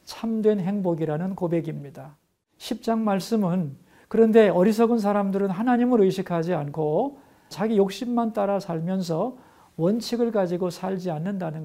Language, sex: Korean, male